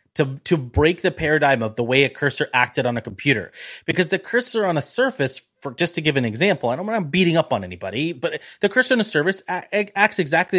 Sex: male